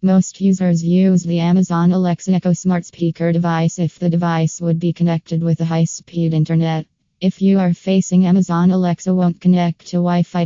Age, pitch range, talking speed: 20-39, 165-180 Hz, 170 wpm